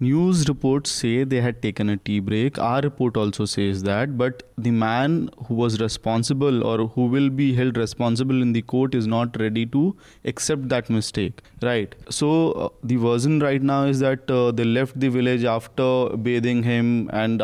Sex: male